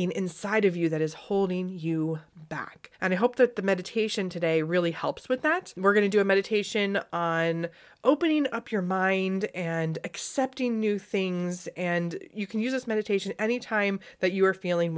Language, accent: English, American